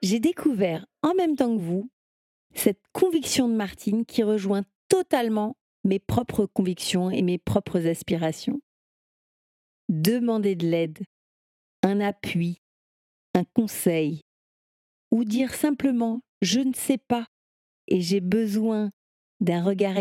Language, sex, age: French, female, 50-69